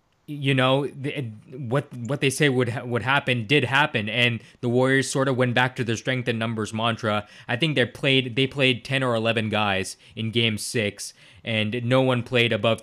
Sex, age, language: male, 20-39, English